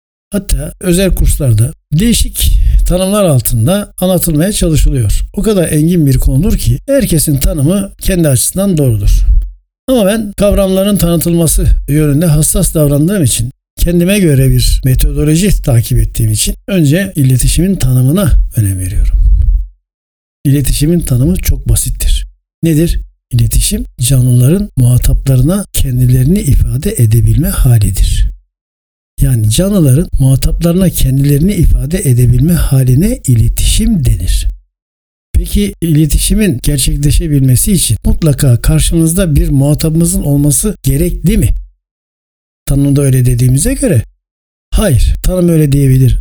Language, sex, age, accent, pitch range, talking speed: Turkish, male, 60-79, native, 115-170 Hz, 105 wpm